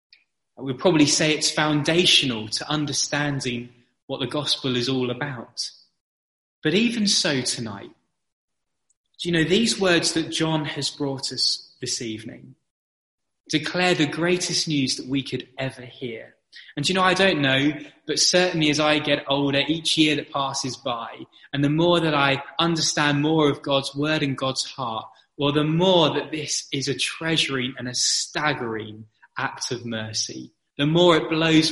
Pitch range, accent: 130-160 Hz, British